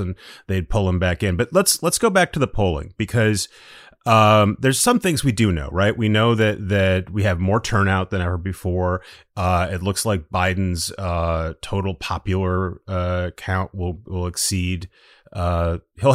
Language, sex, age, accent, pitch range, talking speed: English, male, 30-49, American, 85-105 Hz, 180 wpm